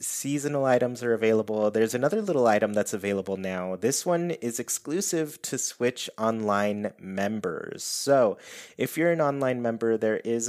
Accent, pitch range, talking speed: American, 105-125 Hz, 155 wpm